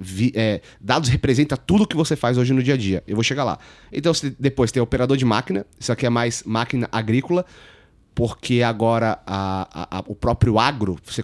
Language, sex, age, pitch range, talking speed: Portuguese, male, 30-49, 110-130 Hz, 205 wpm